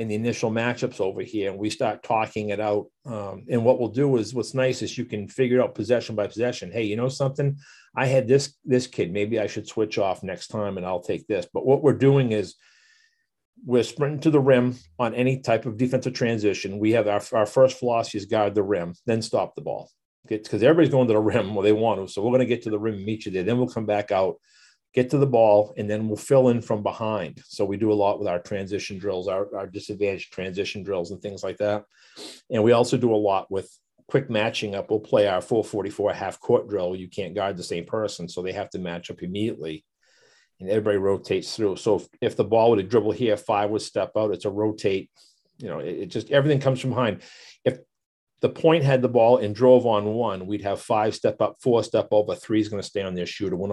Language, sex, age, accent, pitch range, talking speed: English, male, 40-59, American, 105-125 Hz, 250 wpm